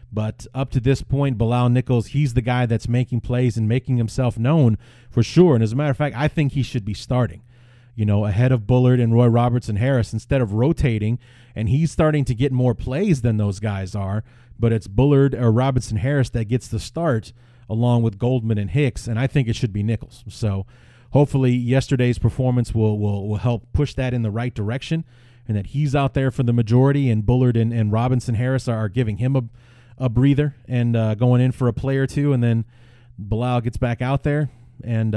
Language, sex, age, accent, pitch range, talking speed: English, male, 30-49, American, 110-130 Hz, 215 wpm